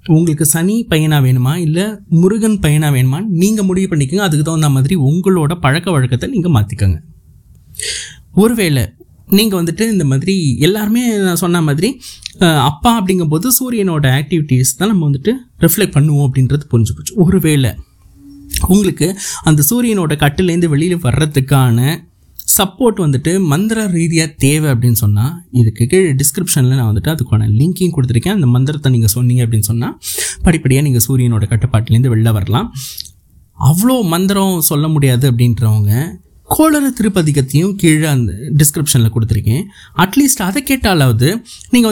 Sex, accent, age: male, native, 20-39